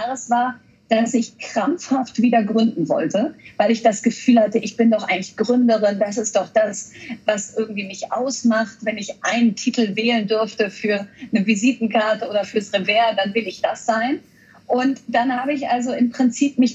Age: 40-59